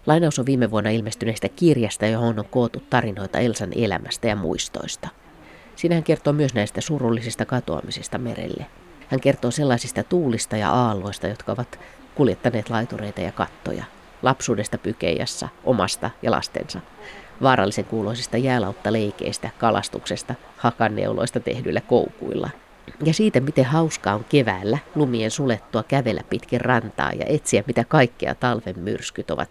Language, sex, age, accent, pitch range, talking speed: Finnish, female, 30-49, native, 110-145 Hz, 130 wpm